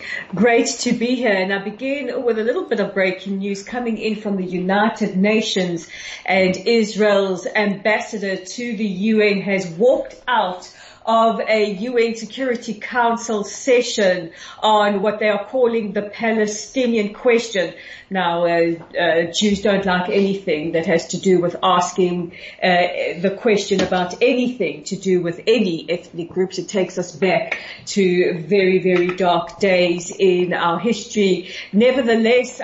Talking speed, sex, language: 145 wpm, female, English